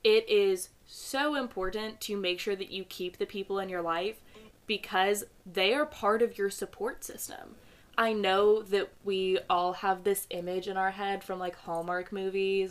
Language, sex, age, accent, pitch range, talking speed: English, female, 20-39, American, 185-225 Hz, 180 wpm